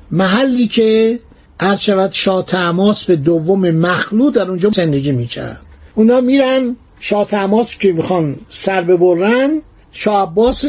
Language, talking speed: Persian, 110 wpm